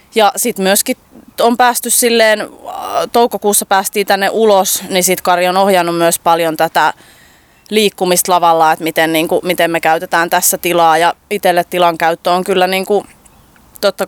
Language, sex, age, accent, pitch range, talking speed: Finnish, female, 20-39, native, 175-210 Hz, 160 wpm